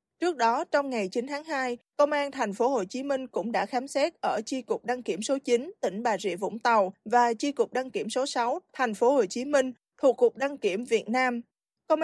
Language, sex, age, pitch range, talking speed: Vietnamese, female, 20-39, 235-285 Hz, 245 wpm